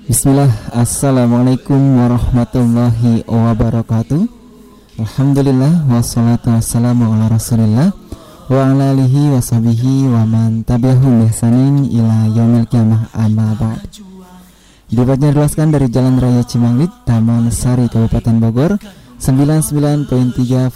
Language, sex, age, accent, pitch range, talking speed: Indonesian, male, 20-39, native, 115-140 Hz, 70 wpm